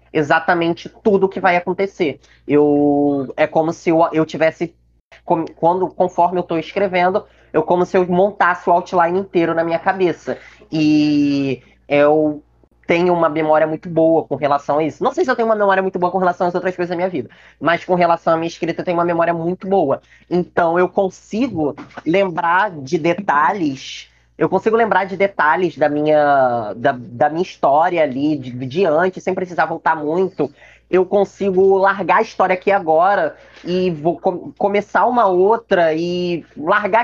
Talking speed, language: 175 wpm, Portuguese